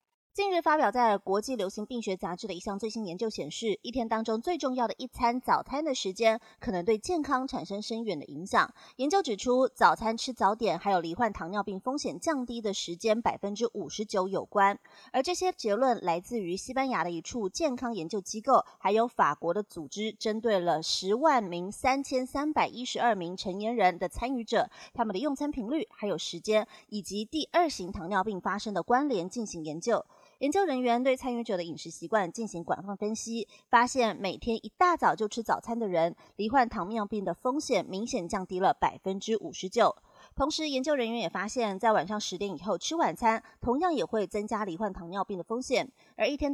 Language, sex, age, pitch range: Chinese, female, 30-49, 200-255 Hz